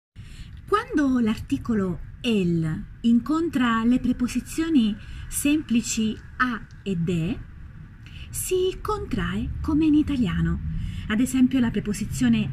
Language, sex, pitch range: Italian, female, 185-260 Hz